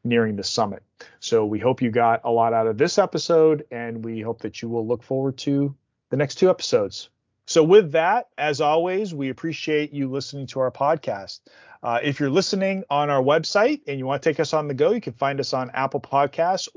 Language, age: English, 30-49